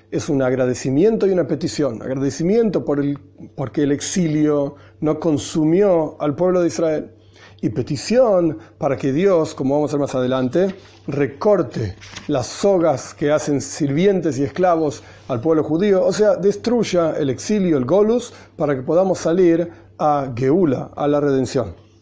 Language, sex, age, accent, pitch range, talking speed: Spanish, male, 40-59, Argentinian, 130-175 Hz, 155 wpm